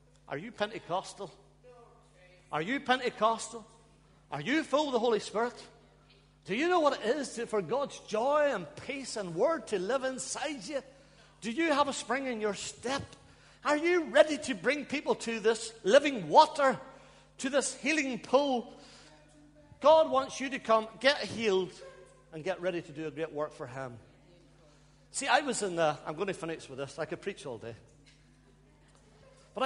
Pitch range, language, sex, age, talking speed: 155-225 Hz, English, male, 50-69, 175 wpm